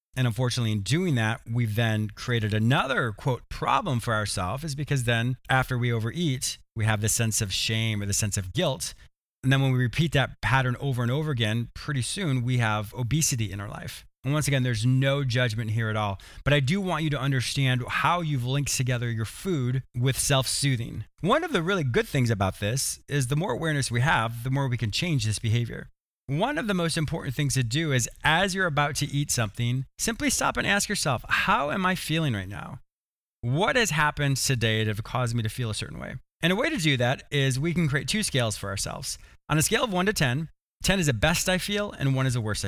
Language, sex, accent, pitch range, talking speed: English, male, American, 115-150 Hz, 230 wpm